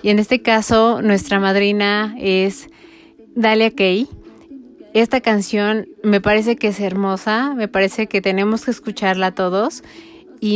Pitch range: 195-225 Hz